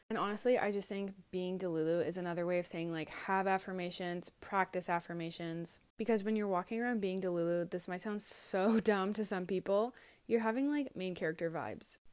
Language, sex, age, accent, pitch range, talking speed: English, female, 20-39, American, 180-220 Hz, 190 wpm